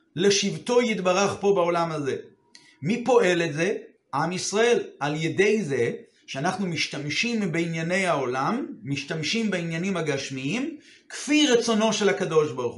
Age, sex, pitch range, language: 30-49, male, 160-230 Hz, Hebrew